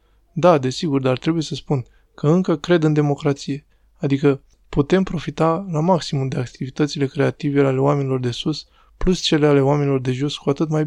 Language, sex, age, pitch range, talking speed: Romanian, male, 20-39, 135-150 Hz, 175 wpm